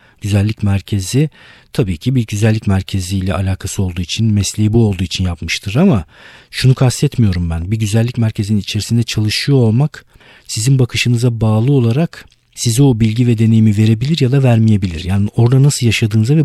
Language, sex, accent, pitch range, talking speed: Turkish, male, native, 95-120 Hz, 155 wpm